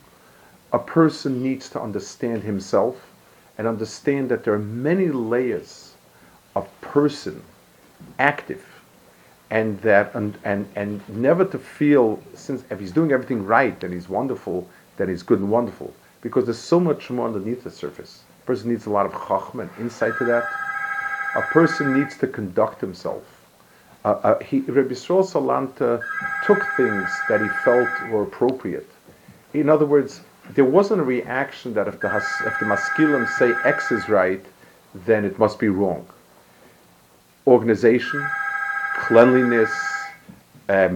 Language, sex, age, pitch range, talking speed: English, male, 50-69, 105-150 Hz, 145 wpm